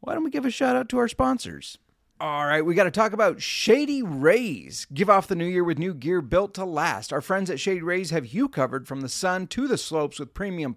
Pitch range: 140-180 Hz